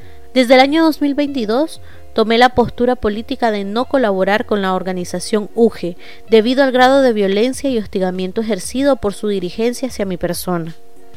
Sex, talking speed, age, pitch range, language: female, 155 wpm, 30-49, 195-245 Hz, Spanish